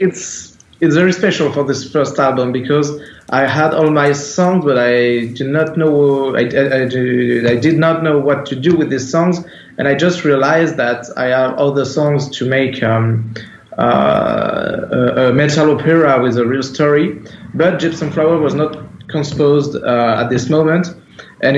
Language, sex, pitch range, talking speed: English, male, 120-150 Hz, 180 wpm